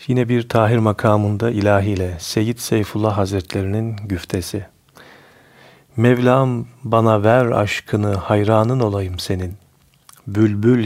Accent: native